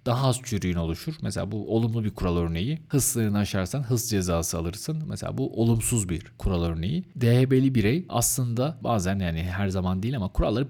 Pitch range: 95-135 Hz